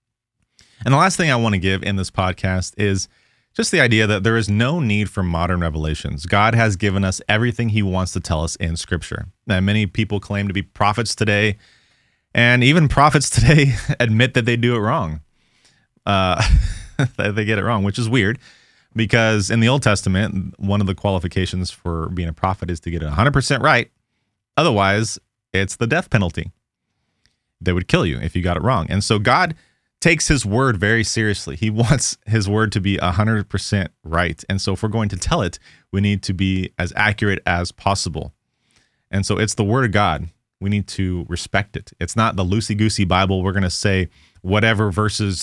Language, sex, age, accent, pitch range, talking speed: English, male, 30-49, American, 95-115 Hz, 200 wpm